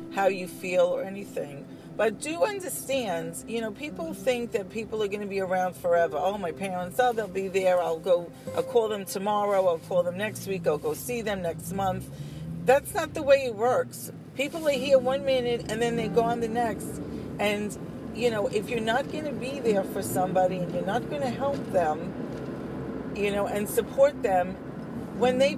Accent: American